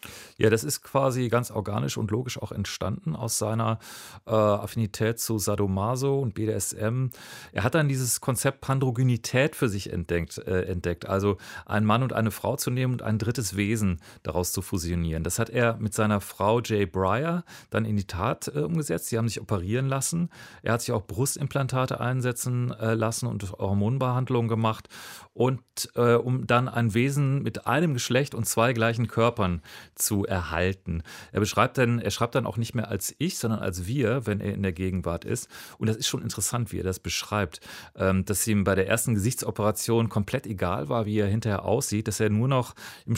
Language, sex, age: German, male, 40-59